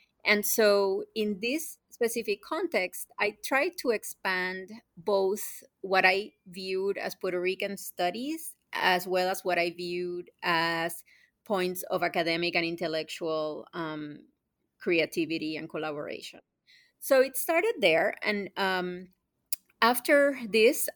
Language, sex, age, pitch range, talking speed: English, female, 30-49, 170-210 Hz, 120 wpm